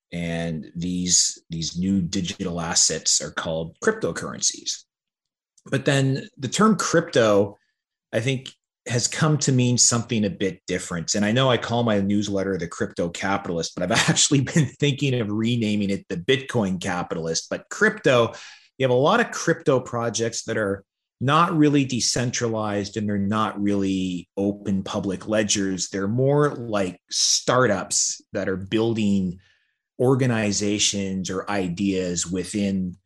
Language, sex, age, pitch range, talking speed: English, male, 30-49, 95-120 Hz, 140 wpm